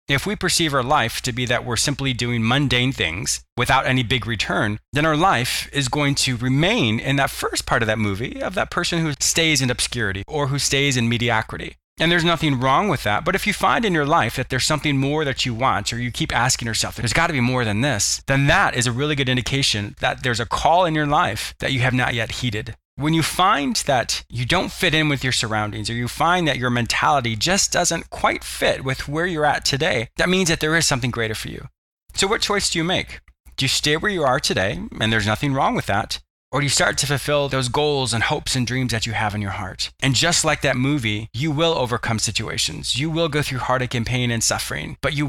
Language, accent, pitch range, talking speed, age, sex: English, American, 120-150 Hz, 250 wpm, 20-39, male